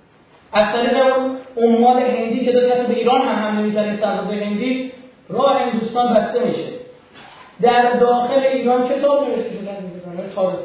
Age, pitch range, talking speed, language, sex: 40-59, 215-260 Hz, 130 wpm, Persian, male